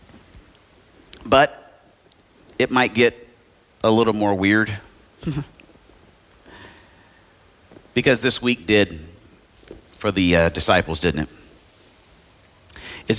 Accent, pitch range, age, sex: American, 90-115 Hz, 50-69, male